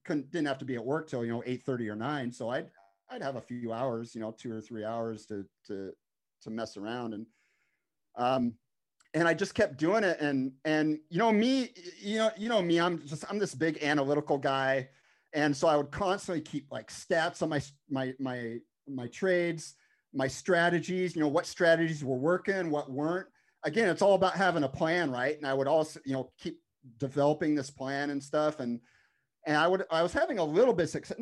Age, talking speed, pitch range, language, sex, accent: 40-59, 215 wpm, 125-165 Hz, English, male, American